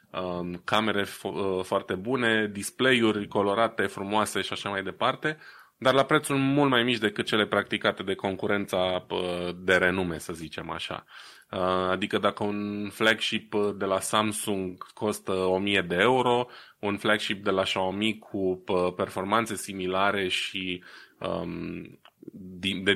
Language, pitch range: Romanian, 95-110 Hz